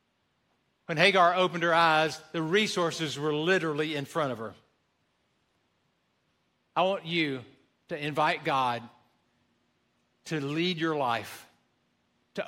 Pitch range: 140-200 Hz